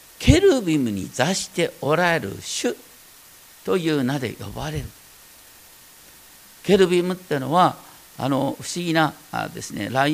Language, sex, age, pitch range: Japanese, male, 50-69, 140-230 Hz